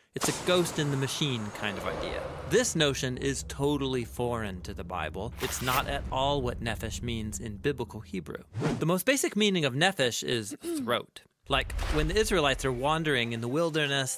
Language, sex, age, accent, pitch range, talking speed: English, male, 40-59, American, 120-175 Hz, 185 wpm